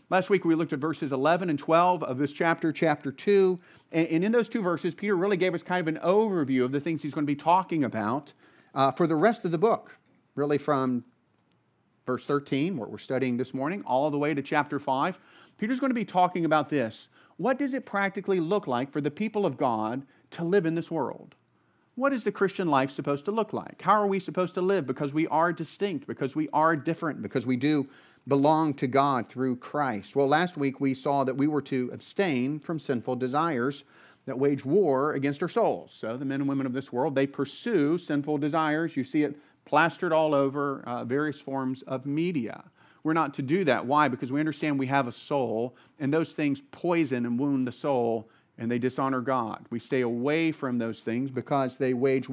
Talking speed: 215 wpm